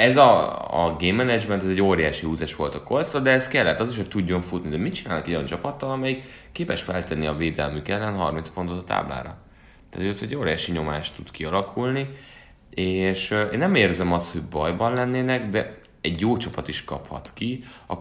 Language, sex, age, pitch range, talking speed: Hungarian, male, 30-49, 80-115 Hz, 195 wpm